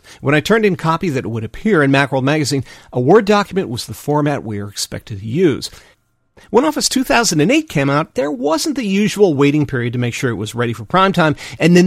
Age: 40-59